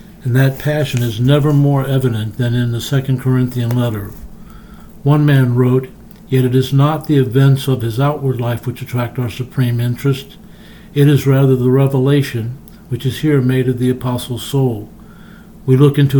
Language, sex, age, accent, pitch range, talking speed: English, male, 60-79, American, 125-150 Hz, 175 wpm